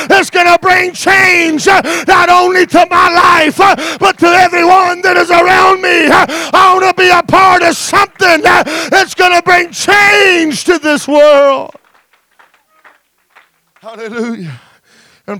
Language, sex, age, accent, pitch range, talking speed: English, male, 40-59, American, 275-320 Hz, 140 wpm